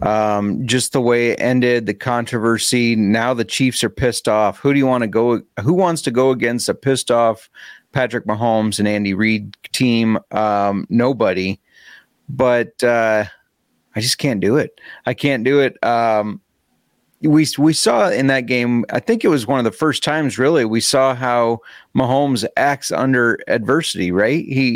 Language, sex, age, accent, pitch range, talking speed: English, male, 30-49, American, 115-140 Hz, 175 wpm